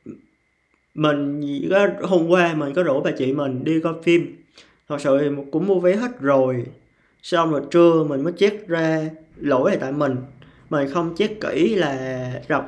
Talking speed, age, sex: 180 wpm, 20-39, male